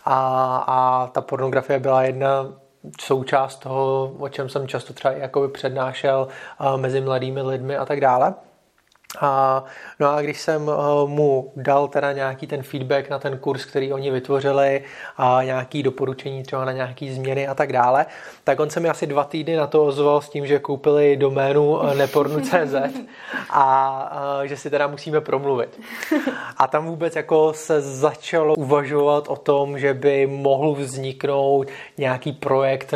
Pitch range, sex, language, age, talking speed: 135-145 Hz, male, Czech, 30-49, 155 wpm